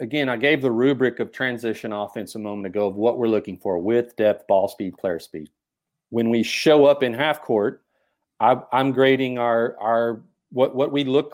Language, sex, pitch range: English, male, 120-145 Hz